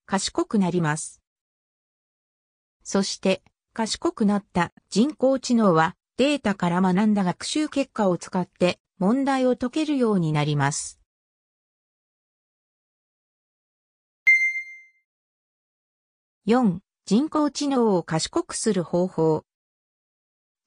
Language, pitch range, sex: Japanese, 175-260 Hz, female